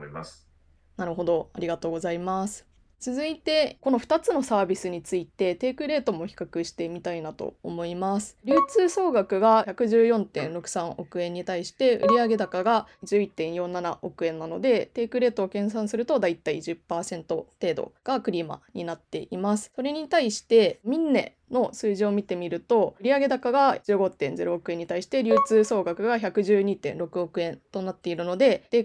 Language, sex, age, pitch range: Japanese, female, 20-39, 175-250 Hz